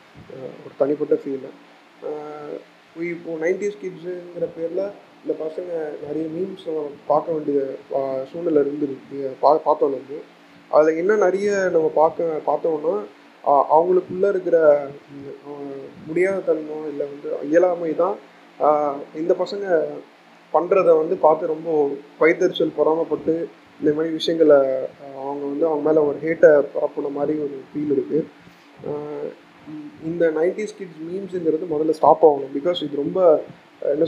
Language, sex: Tamil, male